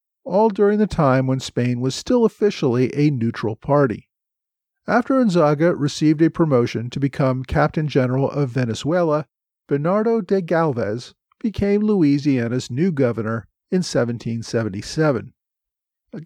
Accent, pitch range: American, 125-175 Hz